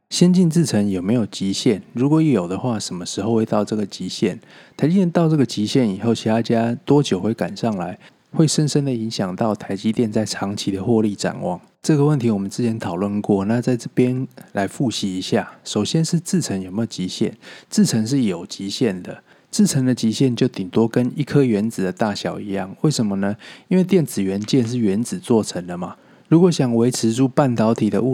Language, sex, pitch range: Chinese, male, 105-135 Hz